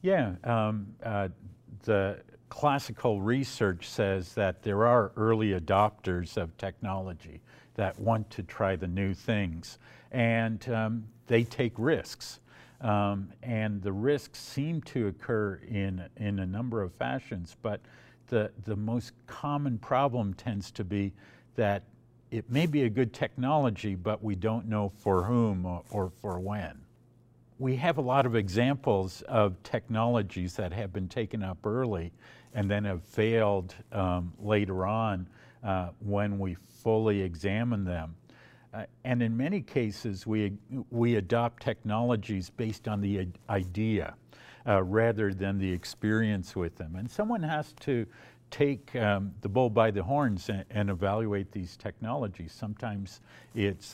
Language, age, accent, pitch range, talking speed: English, 50-69, American, 100-120 Hz, 145 wpm